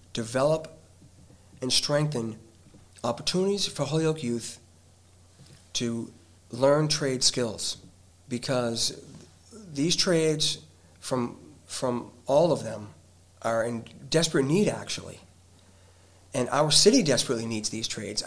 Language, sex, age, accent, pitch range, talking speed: English, male, 40-59, American, 105-145 Hz, 105 wpm